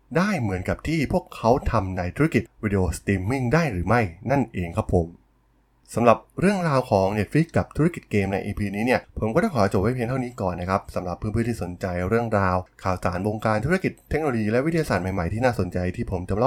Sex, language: male, Thai